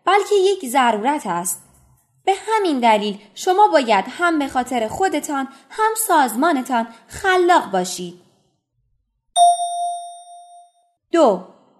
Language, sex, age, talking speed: Persian, female, 20-39, 90 wpm